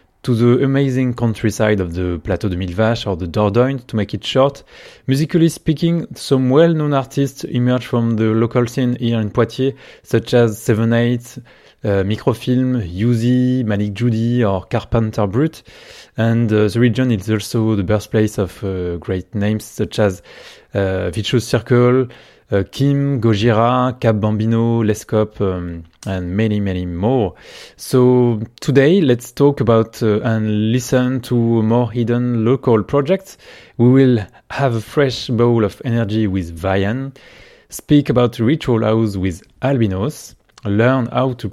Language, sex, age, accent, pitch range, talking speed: French, male, 20-39, French, 105-130 Hz, 145 wpm